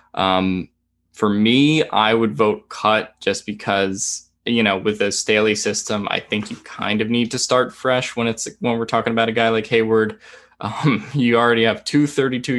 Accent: American